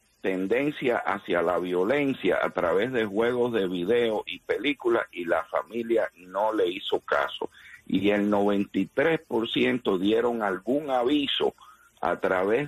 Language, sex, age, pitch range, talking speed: English, male, 60-79, 95-135 Hz, 130 wpm